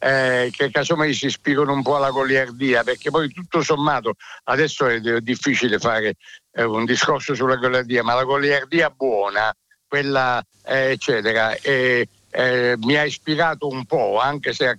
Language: Italian